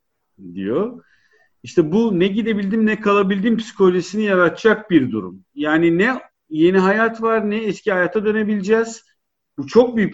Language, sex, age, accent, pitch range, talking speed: Turkish, male, 50-69, native, 175-220 Hz, 135 wpm